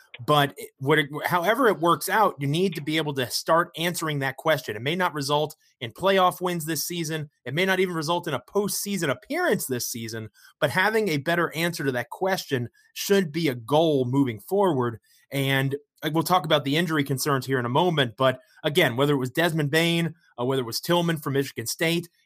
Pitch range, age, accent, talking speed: 130-170 Hz, 30-49, American, 210 wpm